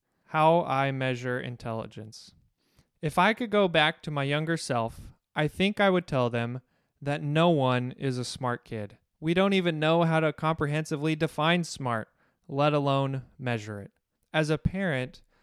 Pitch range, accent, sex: 125-155 Hz, American, male